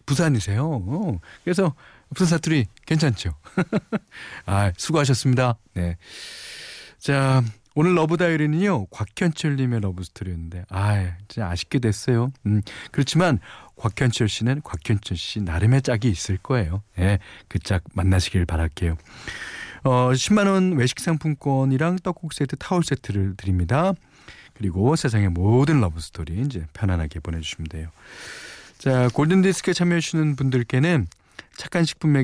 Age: 40-59